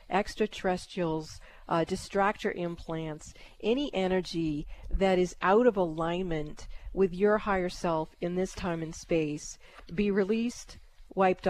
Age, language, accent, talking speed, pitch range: 40-59, English, American, 120 wpm, 170-195 Hz